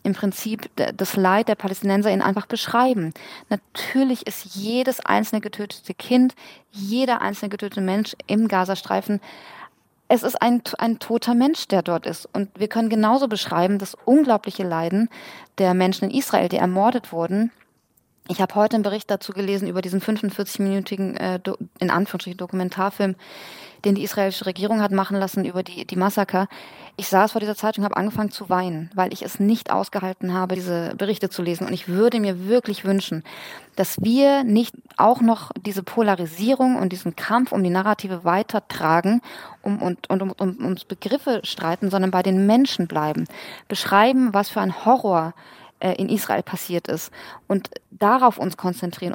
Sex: female